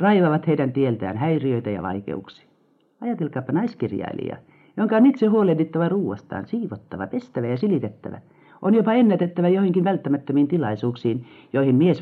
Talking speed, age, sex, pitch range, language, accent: 125 wpm, 50-69, male, 105-175 Hz, Finnish, native